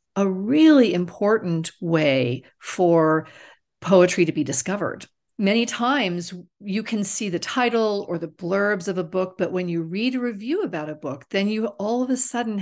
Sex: female